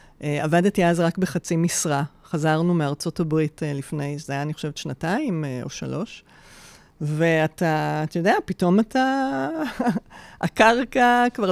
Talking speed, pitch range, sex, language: 120 wpm, 155-190 Hz, female, Hebrew